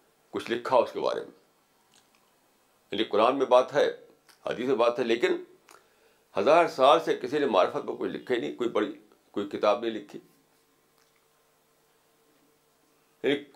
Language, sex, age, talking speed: Urdu, male, 50-69, 145 wpm